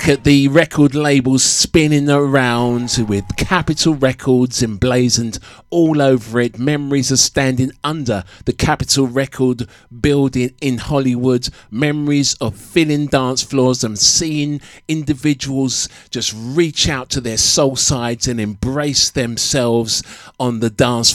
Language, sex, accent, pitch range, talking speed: English, male, British, 120-145 Hz, 125 wpm